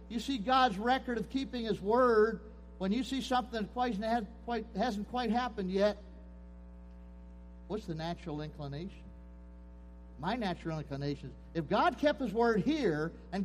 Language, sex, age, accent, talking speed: English, male, 50-69, American, 145 wpm